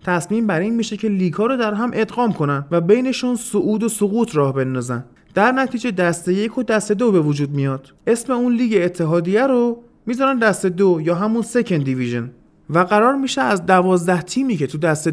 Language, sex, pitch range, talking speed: Persian, male, 155-225 Hz, 195 wpm